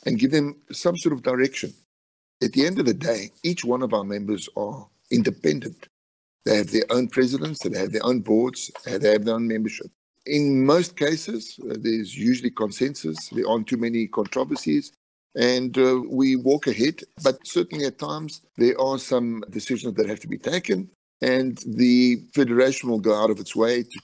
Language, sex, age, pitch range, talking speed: English, male, 50-69, 110-135 Hz, 185 wpm